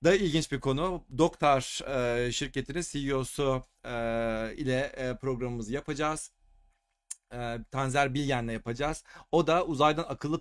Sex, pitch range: male, 130-155 Hz